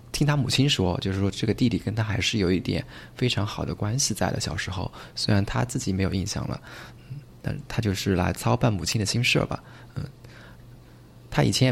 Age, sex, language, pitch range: 20-39, male, Chinese, 105-130 Hz